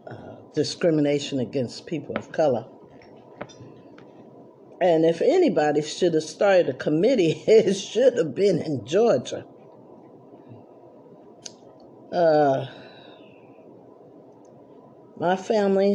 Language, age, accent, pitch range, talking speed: English, 50-69, American, 150-225 Hz, 85 wpm